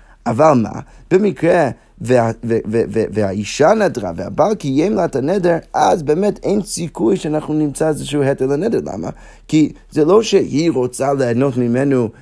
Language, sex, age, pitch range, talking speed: Hebrew, male, 30-49, 120-165 Hz, 145 wpm